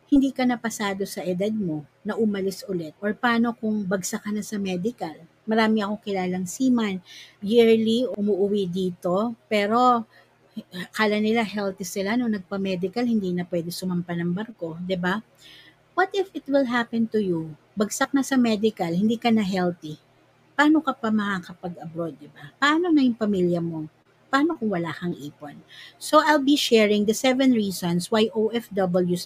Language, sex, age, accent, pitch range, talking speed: Filipino, female, 50-69, native, 180-240 Hz, 165 wpm